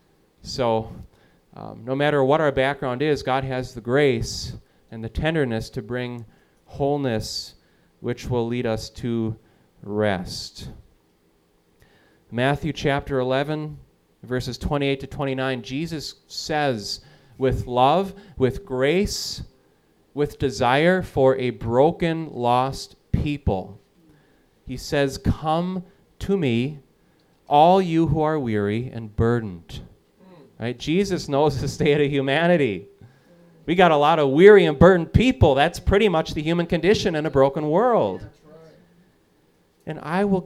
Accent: American